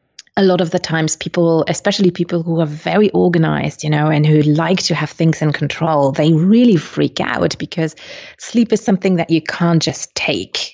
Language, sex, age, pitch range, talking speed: English, female, 30-49, 150-185 Hz, 195 wpm